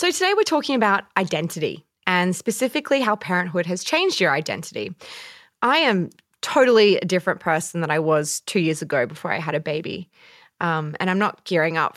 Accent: Australian